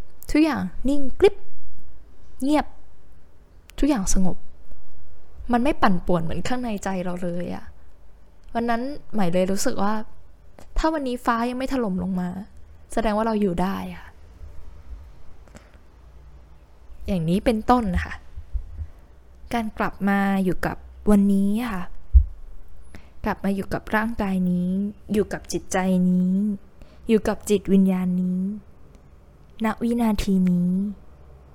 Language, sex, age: Thai, female, 10-29